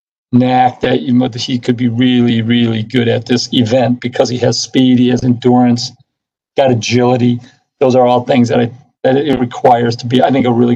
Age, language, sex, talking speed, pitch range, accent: 50-69, English, male, 210 wpm, 120-130 Hz, American